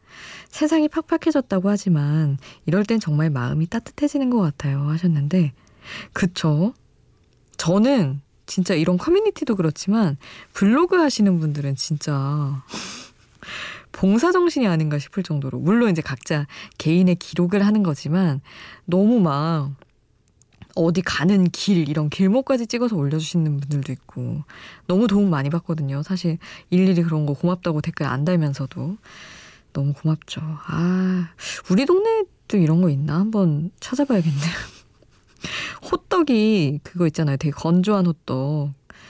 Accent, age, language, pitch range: native, 20-39, Korean, 145-200 Hz